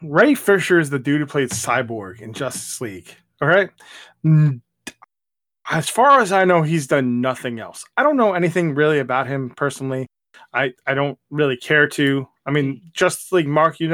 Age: 20-39